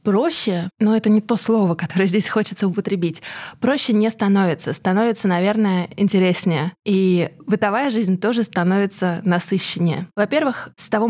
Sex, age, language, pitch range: female, 20-39, Russian, 185-225 Hz